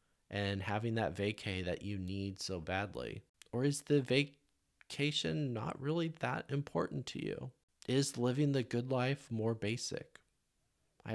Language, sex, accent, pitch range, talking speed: English, male, American, 90-125 Hz, 145 wpm